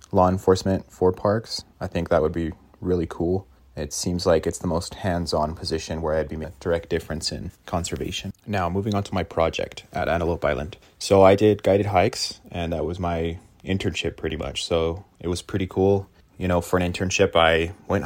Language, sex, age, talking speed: English, male, 20-39, 205 wpm